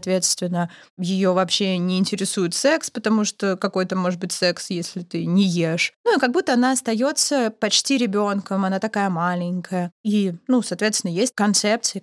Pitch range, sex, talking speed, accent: 190-245 Hz, female, 160 wpm, native